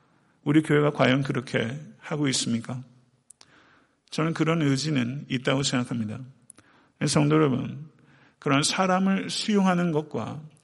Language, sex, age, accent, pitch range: Korean, male, 50-69, native, 130-160 Hz